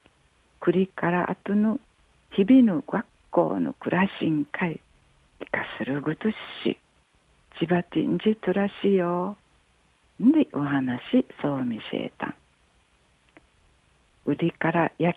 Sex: female